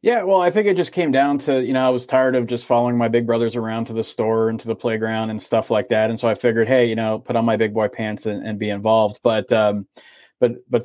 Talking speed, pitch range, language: 295 wpm, 105-120 Hz, English